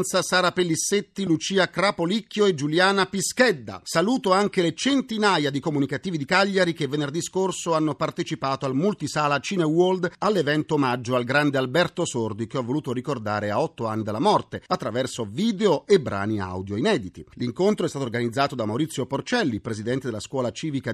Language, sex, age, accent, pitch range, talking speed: Italian, male, 40-59, native, 130-190 Hz, 160 wpm